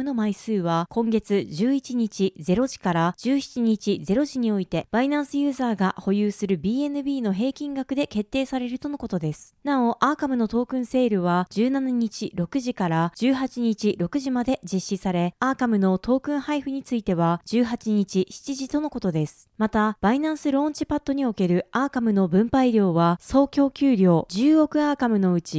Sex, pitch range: female, 195-270 Hz